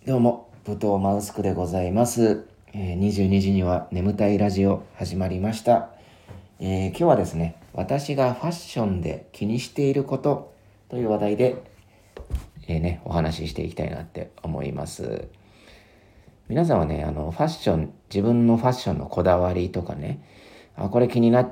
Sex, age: male, 40-59